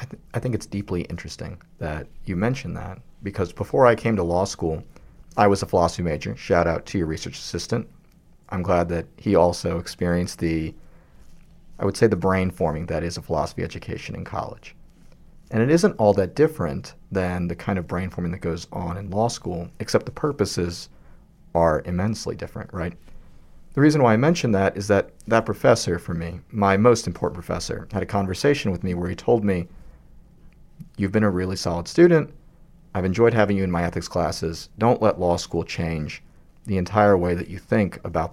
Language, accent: English, American